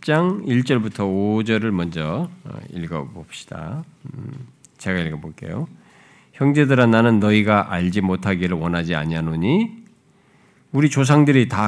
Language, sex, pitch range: Korean, male, 90-130 Hz